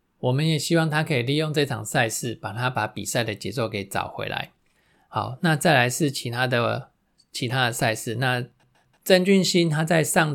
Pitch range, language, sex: 115-145 Hz, Chinese, male